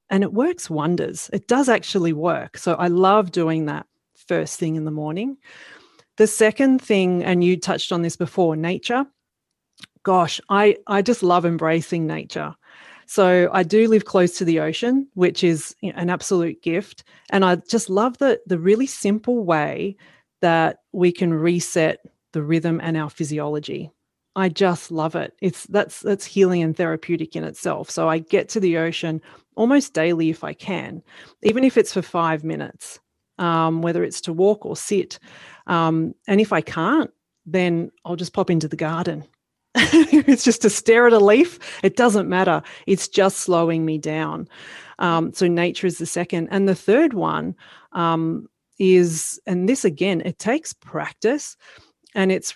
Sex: female